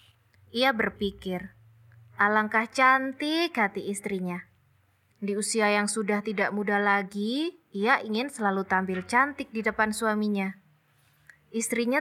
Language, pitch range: Indonesian, 195-240 Hz